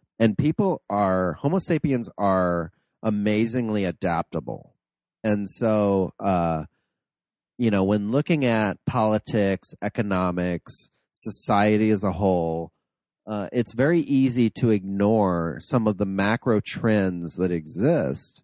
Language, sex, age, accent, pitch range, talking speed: English, male, 30-49, American, 95-125 Hz, 115 wpm